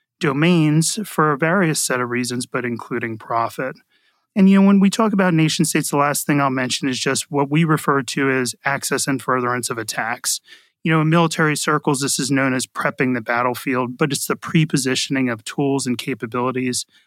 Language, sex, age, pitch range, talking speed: English, male, 30-49, 120-150 Hz, 195 wpm